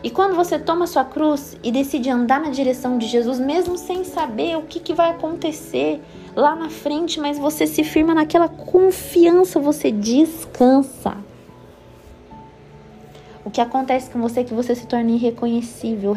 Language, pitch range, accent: Portuguese, 190-240 Hz, Brazilian